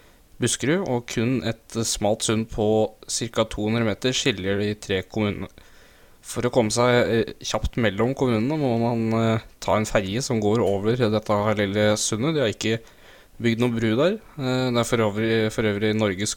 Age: 20-39